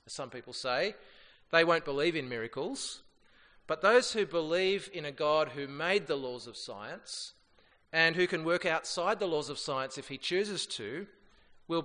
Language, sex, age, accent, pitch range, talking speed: English, male, 30-49, Australian, 135-175 Hz, 180 wpm